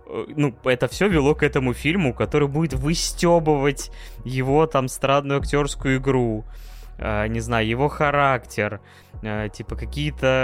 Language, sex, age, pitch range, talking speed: Russian, male, 20-39, 110-135 Hz, 120 wpm